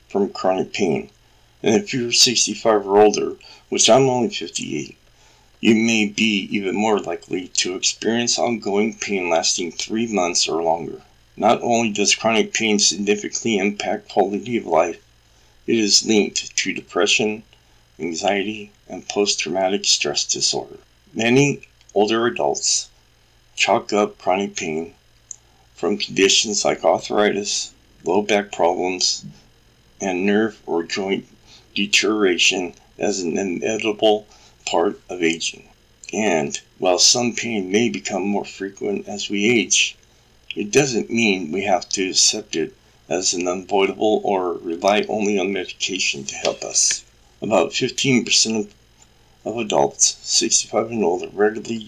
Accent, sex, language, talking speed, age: American, male, English, 130 wpm, 50-69